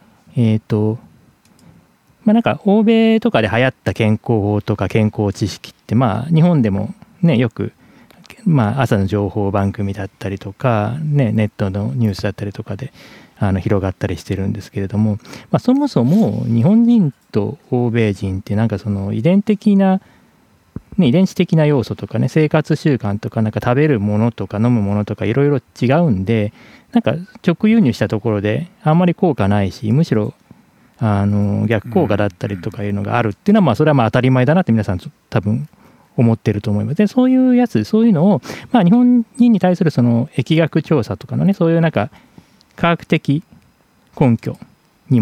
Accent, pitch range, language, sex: native, 105-165 Hz, Japanese, male